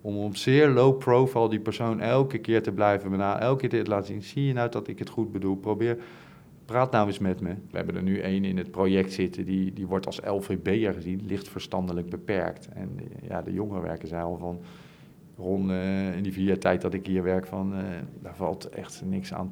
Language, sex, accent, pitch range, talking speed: Dutch, male, Dutch, 95-115 Hz, 230 wpm